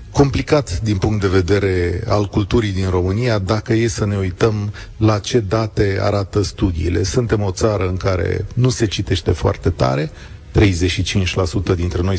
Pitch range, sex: 95-110 Hz, male